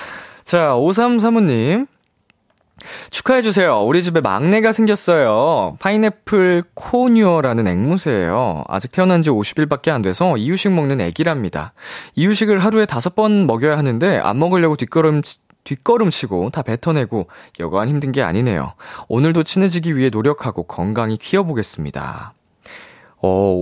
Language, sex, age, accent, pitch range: Korean, male, 20-39, native, 105-170 Hz